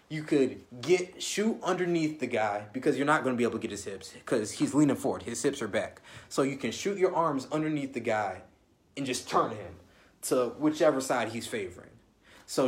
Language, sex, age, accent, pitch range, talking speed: English, male, 20-39, American, 110-155 Hz, 215 wpm